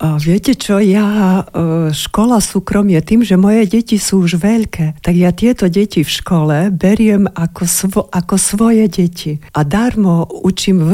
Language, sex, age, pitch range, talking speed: Slovak, female, 50-69, 175-210 Hz, 160 wpm